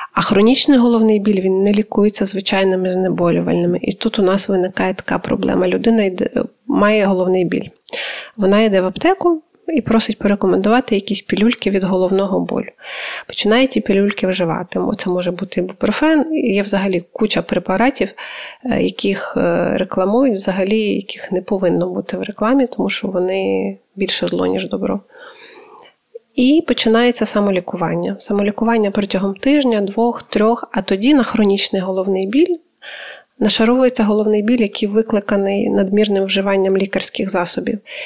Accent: native